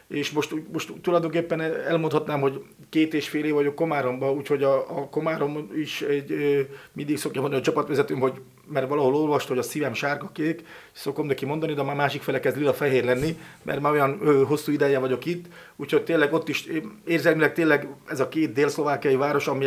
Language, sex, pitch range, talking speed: Hungarian, male, 140-160 Hz, 190 wpm